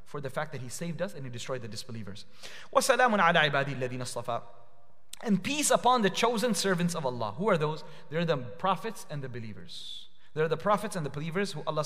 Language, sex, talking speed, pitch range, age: English, male, 185 wpm, 125-170 Hz, 30-49